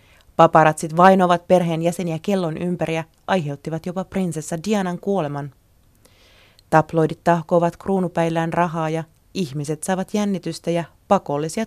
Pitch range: 150-185 Hz